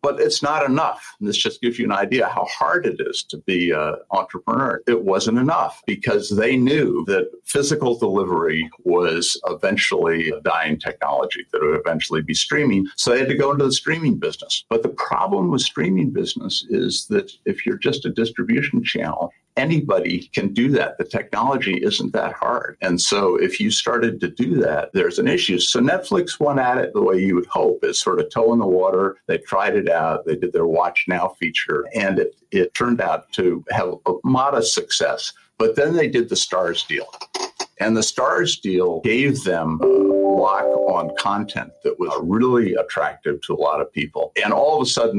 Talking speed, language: 195 wpm, English